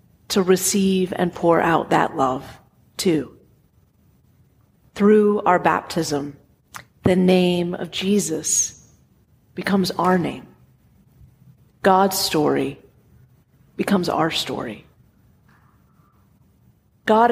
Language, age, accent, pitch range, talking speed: English, 30-49, American, 165-205 Hz, 85 wpm